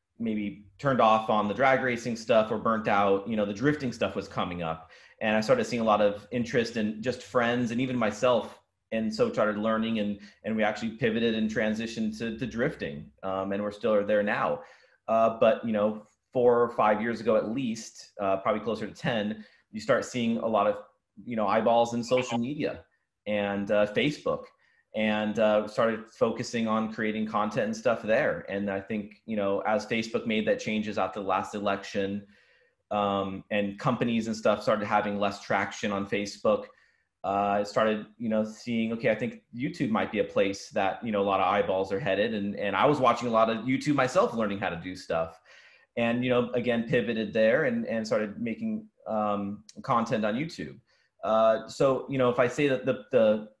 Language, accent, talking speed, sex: English, American, 205 wpm, male